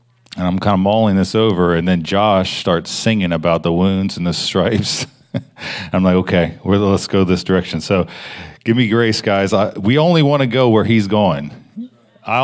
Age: 40-59